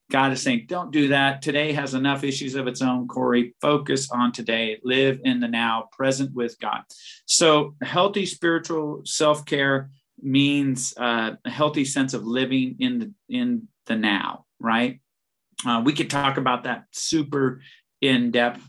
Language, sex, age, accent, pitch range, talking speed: English, male, 40-59, American, 125-145 Hz, 165 wpm